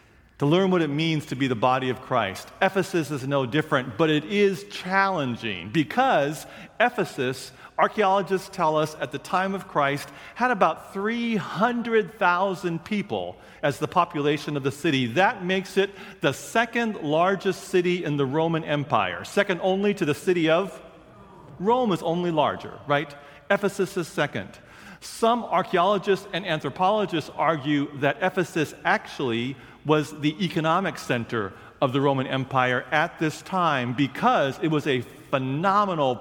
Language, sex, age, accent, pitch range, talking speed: English, male, 40-59, American, 135-185 Hz, 145 wpm